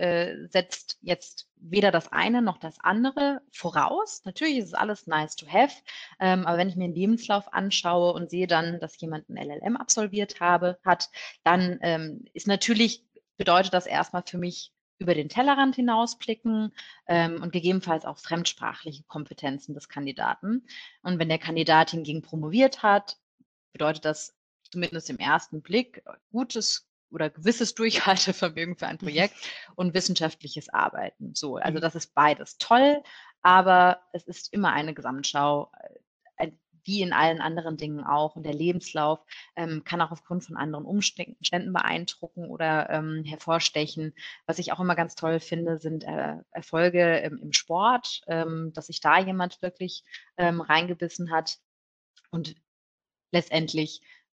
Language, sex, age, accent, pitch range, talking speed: German, female, 30-49, German, 160-195 Hz, 145 wpm